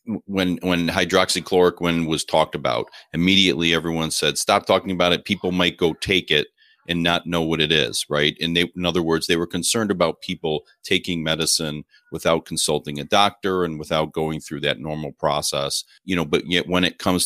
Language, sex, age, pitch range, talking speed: English, male, 40-59, 75-85 Hz, 190 wpm